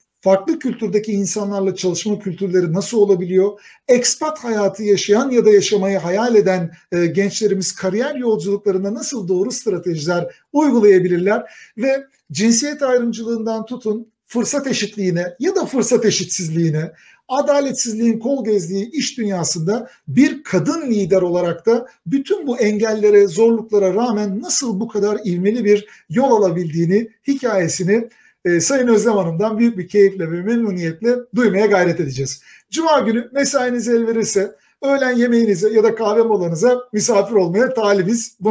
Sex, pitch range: male, 190-240 Hz